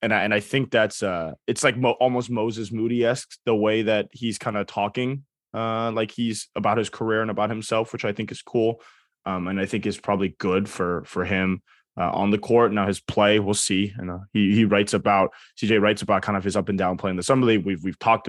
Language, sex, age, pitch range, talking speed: English, male, 20-39, 100-125 Hz, 245 wpm